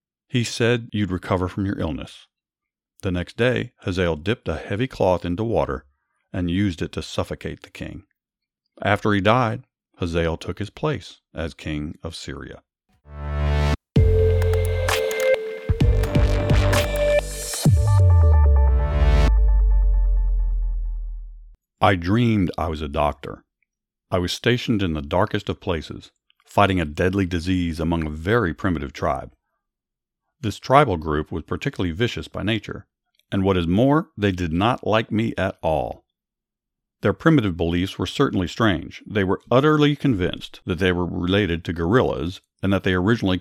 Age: 50-69